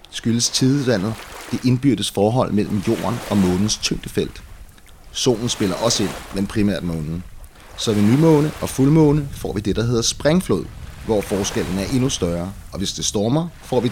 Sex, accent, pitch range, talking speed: male, native, 95-125 Hz, 170 wpm